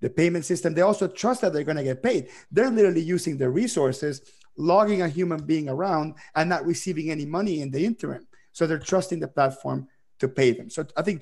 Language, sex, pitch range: English, male, 140-175 Hz